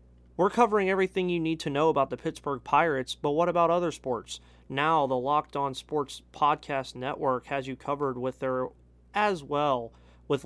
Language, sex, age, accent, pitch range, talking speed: English, male, 30-49, American, 125-150 Hz, 180 wpm